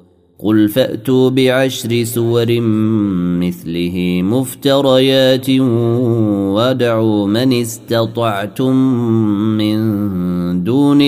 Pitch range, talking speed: 95-125 Hz, 60 wpm